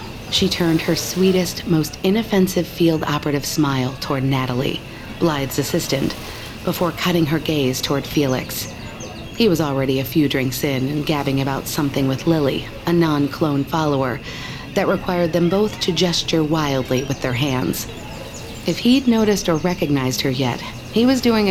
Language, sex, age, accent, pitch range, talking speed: English, female, 40-59, American, 140-175 Hz, 150 wpm